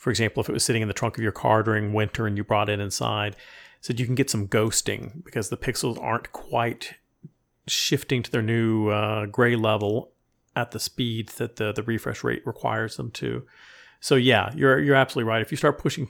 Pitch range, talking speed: 105-130 Hz, 215 wpm